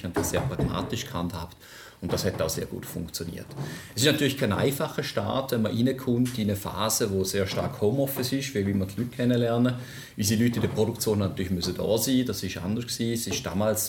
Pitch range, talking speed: 95-120 Hz, 210 wpm